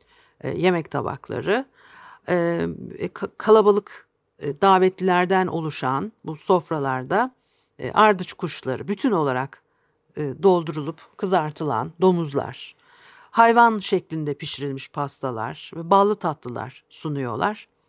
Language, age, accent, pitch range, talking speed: Turkish, 50-69, native, 150-210 Hz, 75 wpm